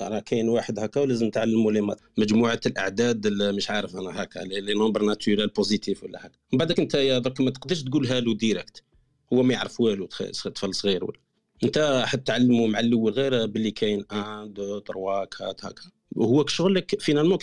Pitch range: 115-155 Hz